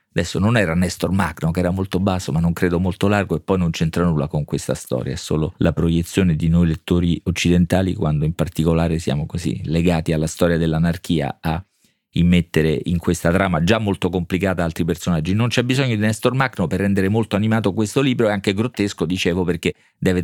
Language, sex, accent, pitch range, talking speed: Italian, male, native, 85-100 Hz, 200 wpm